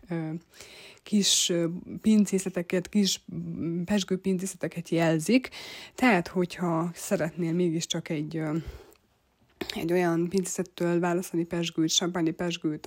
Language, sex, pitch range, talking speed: Hungarian, female, 165-185 Hz, 80 wpm